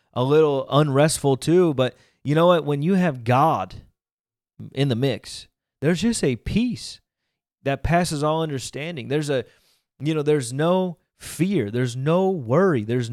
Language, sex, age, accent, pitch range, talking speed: English, male, 30-49, American, 135-180 Hz, 155 wpm